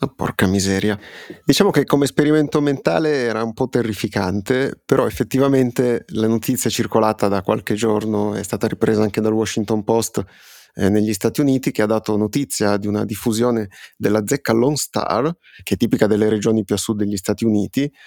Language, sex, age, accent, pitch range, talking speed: Italian, male, 30-49, native, 100-115 Hz, 175 wpm